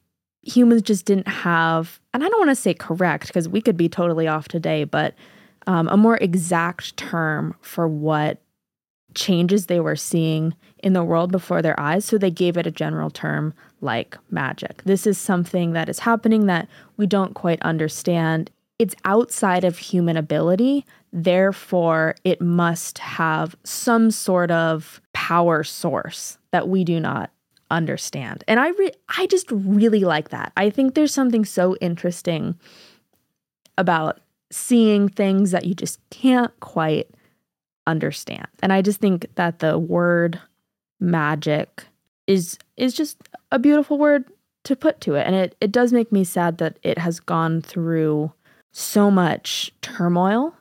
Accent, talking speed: American, 155 wpm